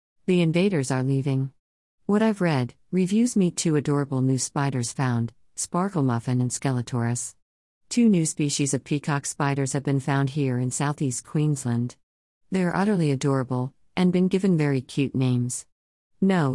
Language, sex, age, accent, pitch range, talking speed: English, female, 50-69, American, 130-165 Hz, 150 wpm